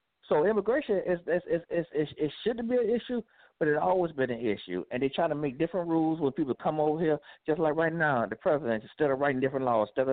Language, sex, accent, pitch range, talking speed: English, male, American, 110-150 Hz, 245 wpm